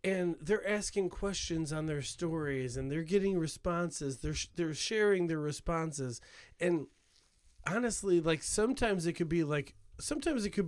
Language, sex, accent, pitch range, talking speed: English, male, American, 130-170 Hz, 155 wpm